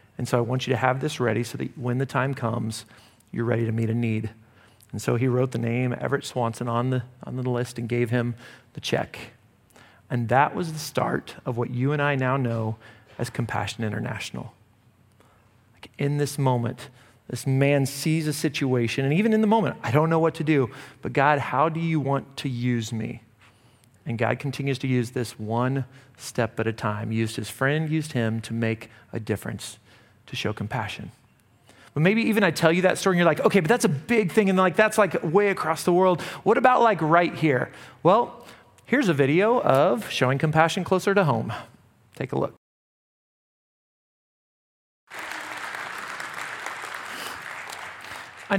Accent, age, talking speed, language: American, 40-59, 185 wpm, English